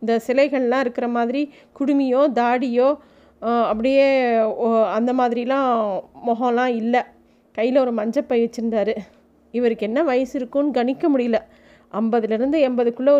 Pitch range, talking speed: 220-265 Hz, 105 wpm